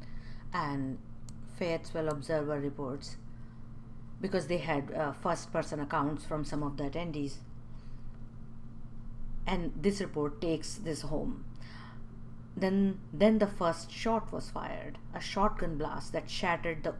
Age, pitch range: 50-69, 125-200 Hz